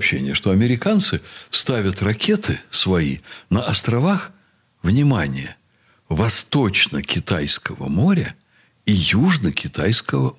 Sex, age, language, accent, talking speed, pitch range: male, 60-79, Russian, native, 70 wpm, 90-115 Hz